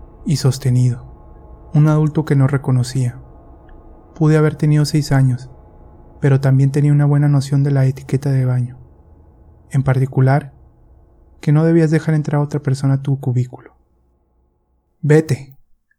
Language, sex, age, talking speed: Spanish, male, 20-39, 140 wpm